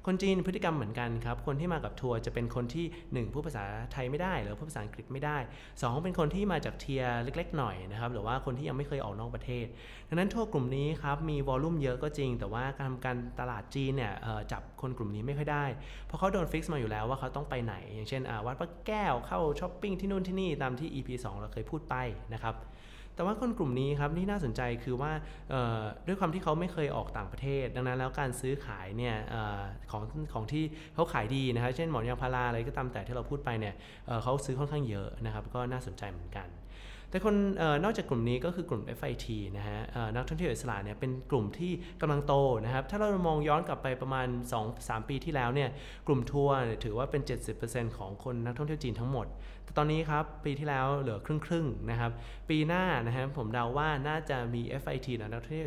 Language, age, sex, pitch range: Thai, 20-39, male, 115-150 Hz